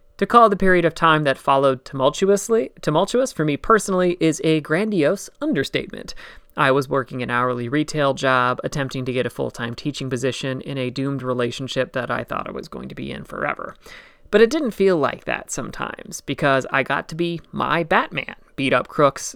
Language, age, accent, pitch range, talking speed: English, 30-49, American, 130-165 Hz, 190 wpm